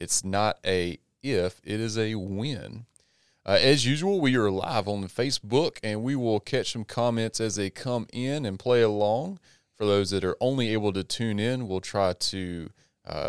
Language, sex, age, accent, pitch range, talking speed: English, male, 30-49, American, 95-125 Hz, 190 wpm